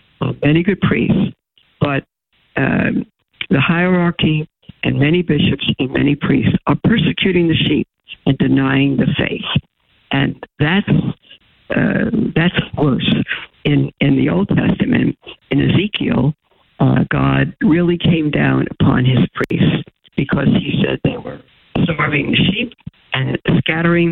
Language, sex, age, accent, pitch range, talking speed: English, female, 60-79, American, 140-175 Hz, 125 wpm